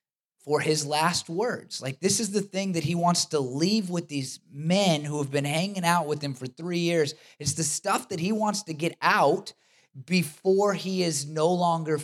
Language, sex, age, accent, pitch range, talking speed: English, male, 20-39, American, 120-170 Hz, 205 wpm